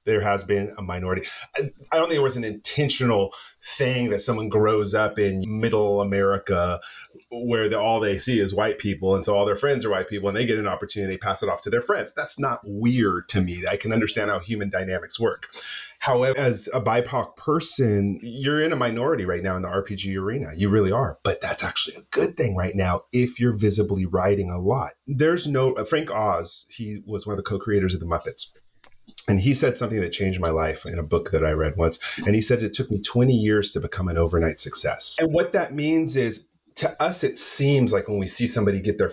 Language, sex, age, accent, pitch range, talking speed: English, male, 30-49, American, 100-140 Hz, 225 wpm